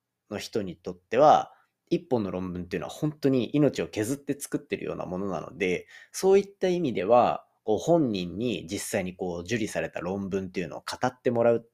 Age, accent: 30-49, native